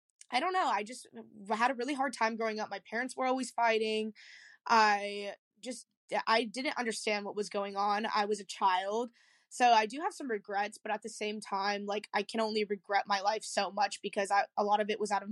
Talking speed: 225 wpm